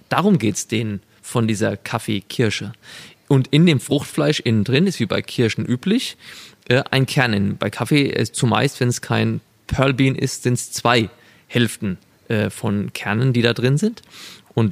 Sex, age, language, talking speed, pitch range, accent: male, 20-39, German, 175 wpm, 115-145 Hz, German